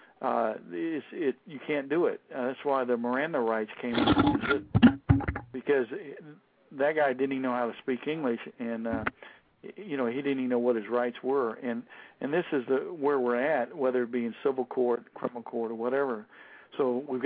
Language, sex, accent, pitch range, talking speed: English, male, American, 120-140 Hz, 200 wpm